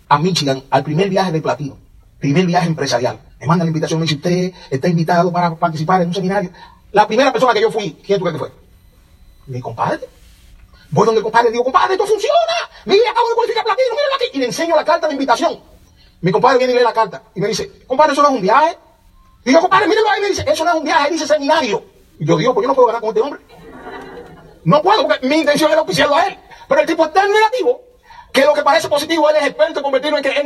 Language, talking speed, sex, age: Spanish, 260 wpm, male, 40-59